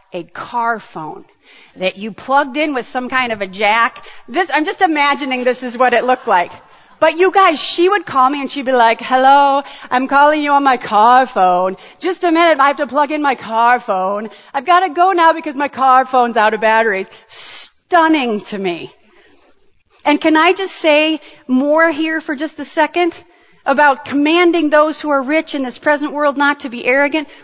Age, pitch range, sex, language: 40-59, 260-335 Hz, female, English